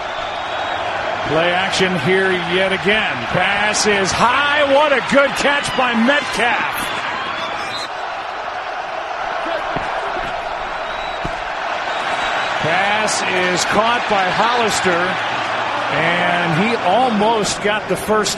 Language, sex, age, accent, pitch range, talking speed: English, male, 40-59, American, 210-310 Hz, 80 wpm